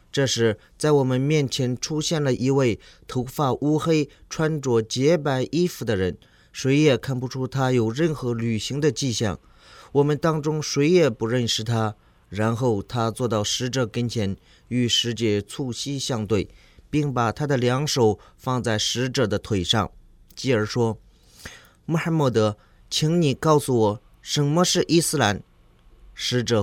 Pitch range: 110-145 Hz